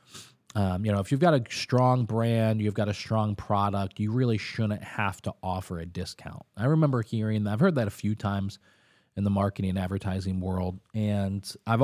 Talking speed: 205 wpm